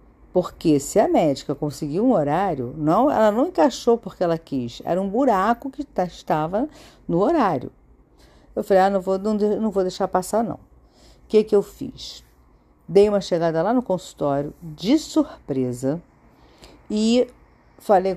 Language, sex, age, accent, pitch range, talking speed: Portuguese, female, 50-69, Brazilian, 165-245 Hz, 160 wpm